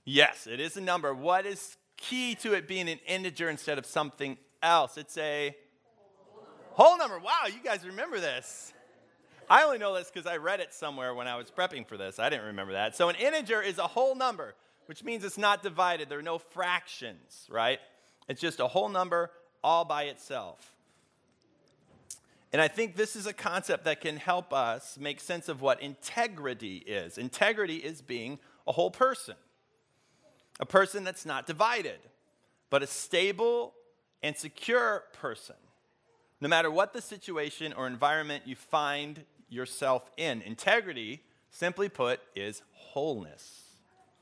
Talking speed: 165 wpm